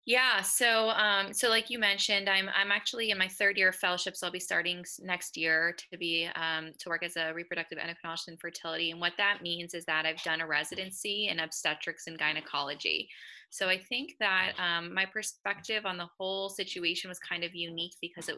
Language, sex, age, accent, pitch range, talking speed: English, female, 20-39, American, 175-215 Hz, 210 wpm